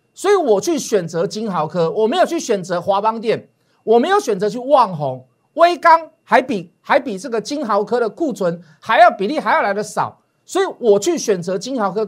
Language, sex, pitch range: Chinese, male, 195-295 Hz